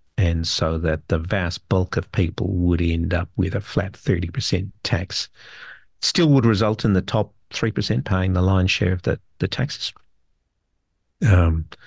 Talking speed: 160 wpm